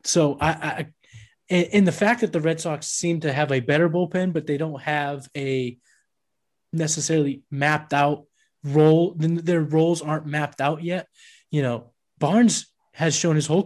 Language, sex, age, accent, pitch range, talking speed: English, male, 20-39, American, 140-170 Hz, 165 wpm